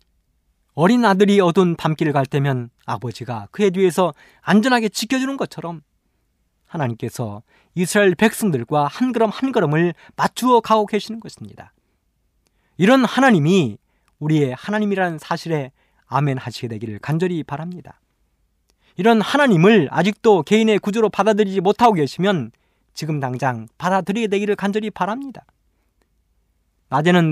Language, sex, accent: Korean, male, native